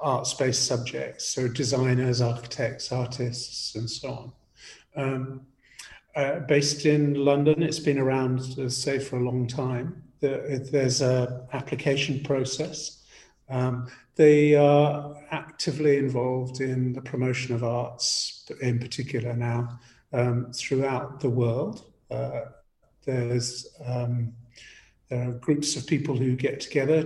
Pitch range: 125-145 Hz